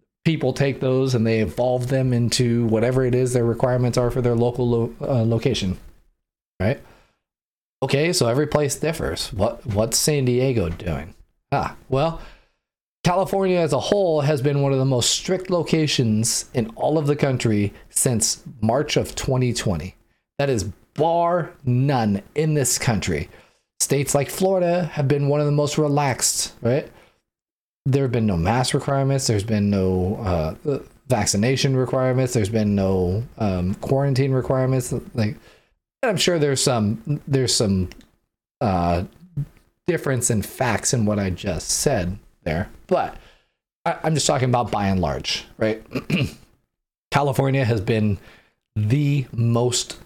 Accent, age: American, 30-49